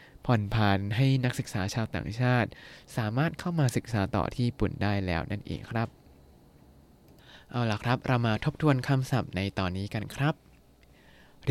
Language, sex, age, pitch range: Thai, male, 20-39, 100-135 Hz